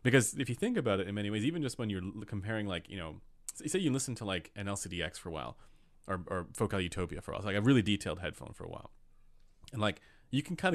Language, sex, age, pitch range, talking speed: English, male, 30-49, 85-105 Hz, 270 wpm